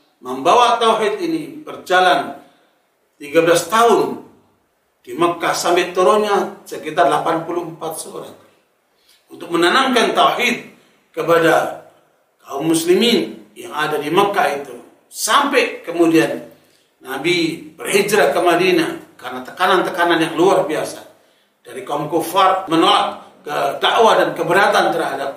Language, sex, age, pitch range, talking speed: Indonesian, male, 40-59, 165-220 Hz, 100 wpm